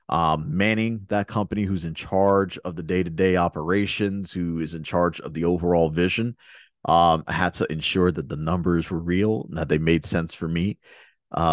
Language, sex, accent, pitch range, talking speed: English, male, American, 90-115 Hz, 195 wpm